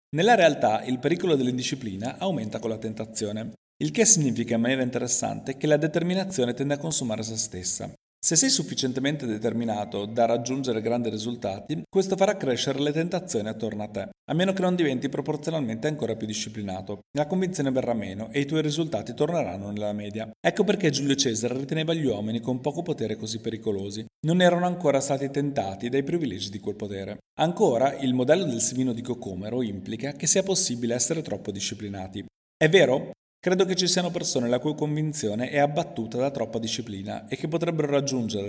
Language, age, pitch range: Italian, 40-59, 110-155 Hz